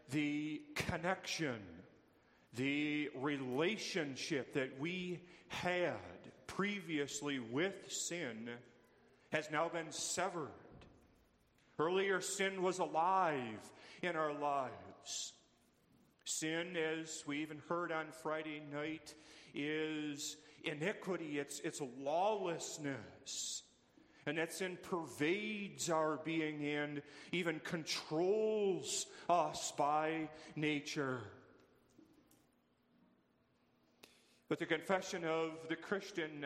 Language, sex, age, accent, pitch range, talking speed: English, male, 40-59, American, 145-175 Hz, 85 wpm